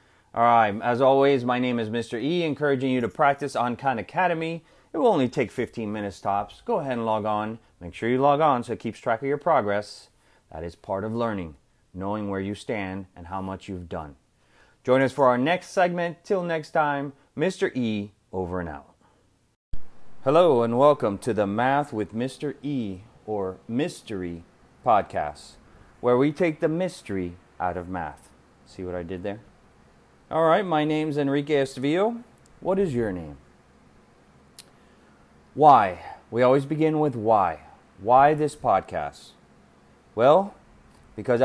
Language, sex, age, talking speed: English, male, 30-49, 165 wpm